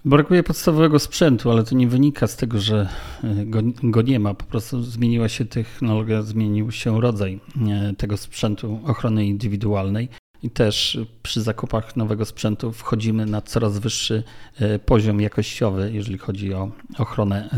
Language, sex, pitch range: Polish, male, 105-120 Hz